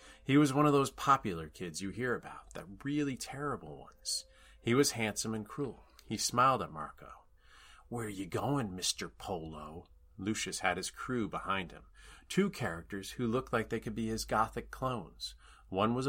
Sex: male